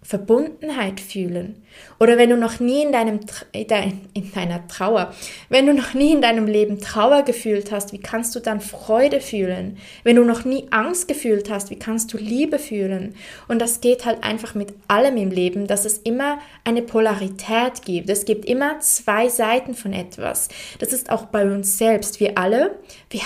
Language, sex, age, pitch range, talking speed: German, female, 20-39, 205-255 Hz, 185 wpm